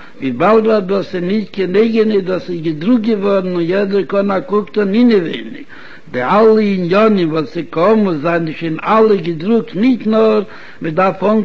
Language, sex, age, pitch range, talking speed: Hebrew, male, 60-79, 185-225 Hz, 170 wpm